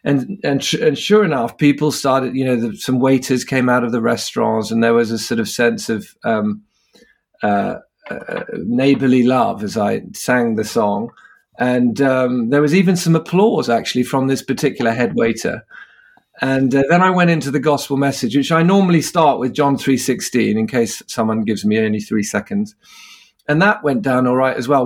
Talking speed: 195 wpm